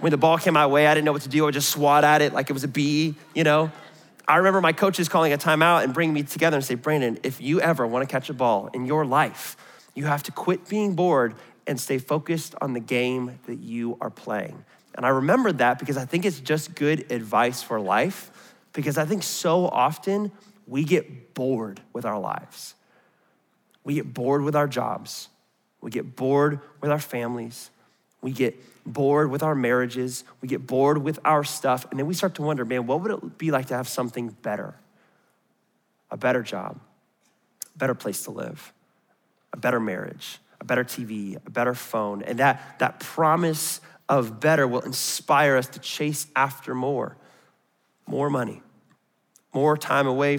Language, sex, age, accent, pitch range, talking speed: English, male, 20-39, American, 130-155 Hz, 195 wpm